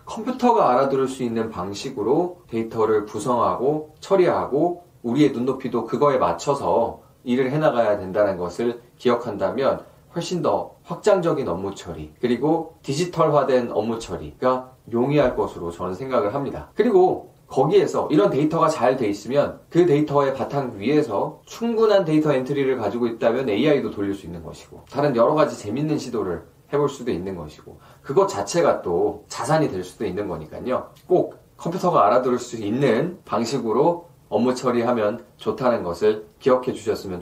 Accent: native